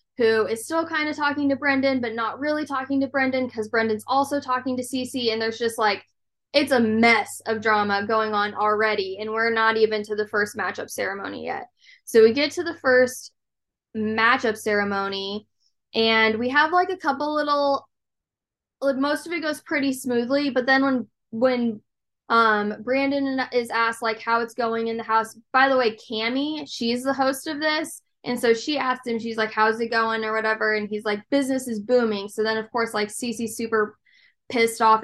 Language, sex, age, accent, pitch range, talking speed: English, female, 10-29, American, 215-265 Hz, 195 wpm